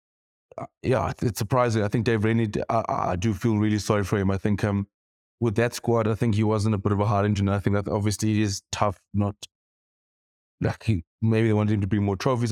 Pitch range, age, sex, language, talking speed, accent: 105-120 Hz, 20-39, male, English, 240 wpm, South African